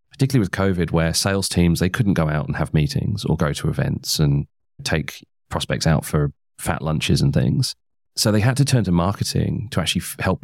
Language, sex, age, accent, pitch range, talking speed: English, male, 30-49, British, 80-100 Hz, 205 wpm